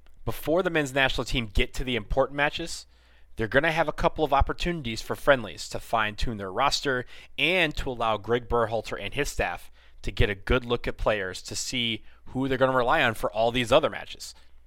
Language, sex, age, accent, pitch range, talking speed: English, male, 30-49, American, 100-130 Hz, 215 wpm